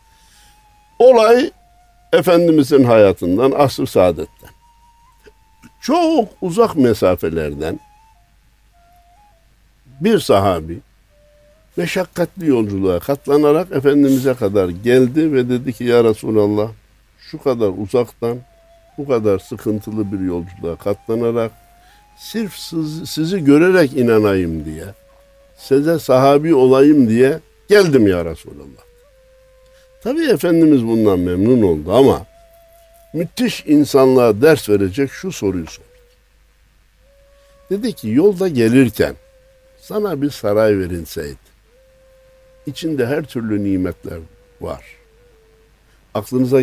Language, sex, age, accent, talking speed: Turkish, male, 60-79, native, 90 wpm